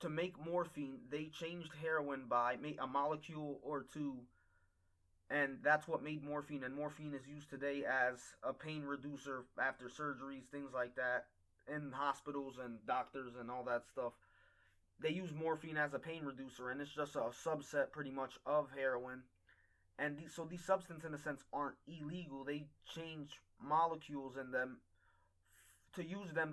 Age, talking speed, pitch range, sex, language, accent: 20-39, 160 wpm, 135-155 Hz, male, English, American